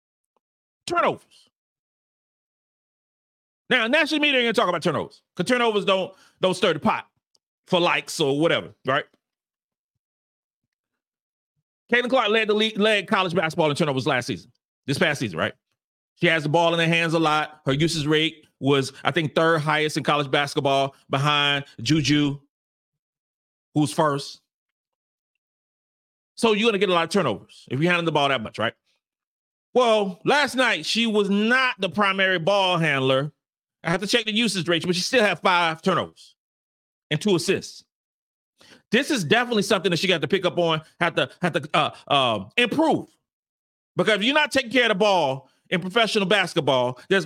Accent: American